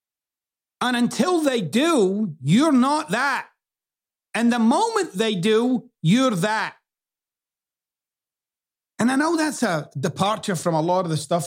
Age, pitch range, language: 50-69, 130-195 Hz, English